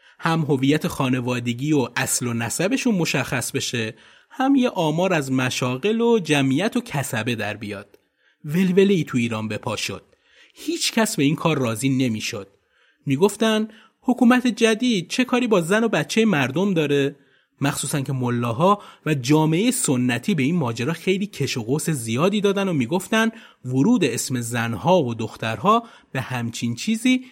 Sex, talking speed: male, 150 wpm